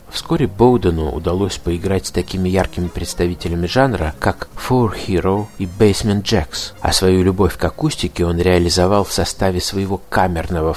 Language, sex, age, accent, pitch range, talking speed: Russian, male, 50-69, native, 85-105 Hz, 145 wpm